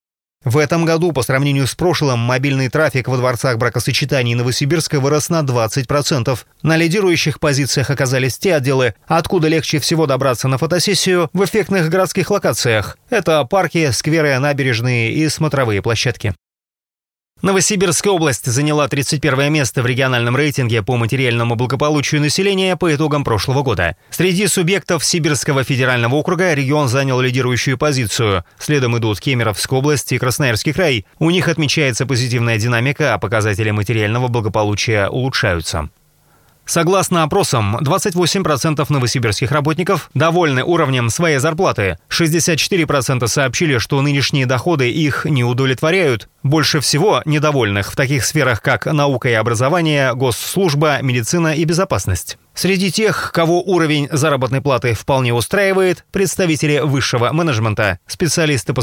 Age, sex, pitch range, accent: 30-49, male, 125-165 Hz, native